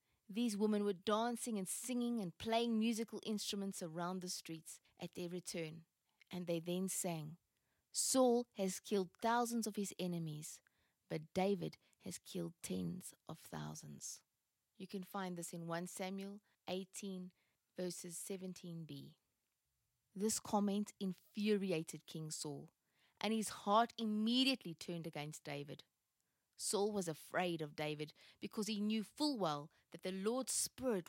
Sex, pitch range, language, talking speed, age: female, 165-210 Hz, English, 135 wpm, 20-39